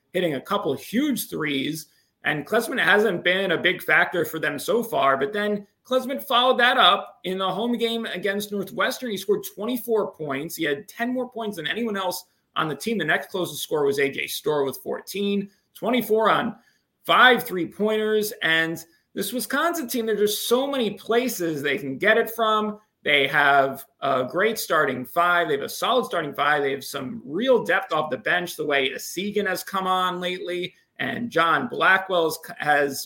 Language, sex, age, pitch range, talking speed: English, male, 30-49, 165-225 Hz, 185 wpm